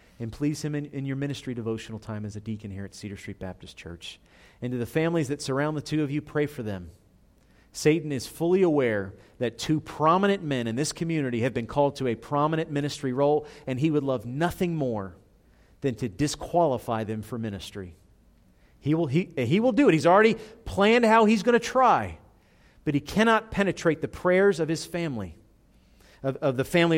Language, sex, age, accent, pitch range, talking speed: English, male, 40-59, American, 115-165 Hz, 195 wpm